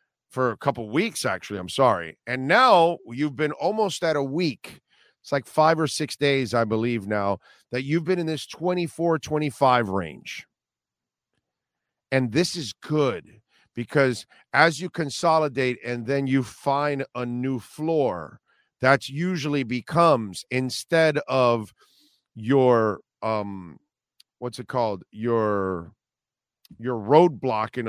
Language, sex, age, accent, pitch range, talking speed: English, male, 40-59, American, 115-145 Hz, 130 wpm